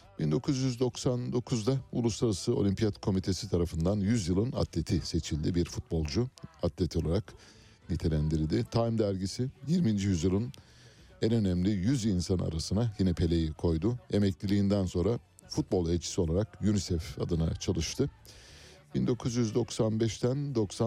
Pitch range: 85-110 Hz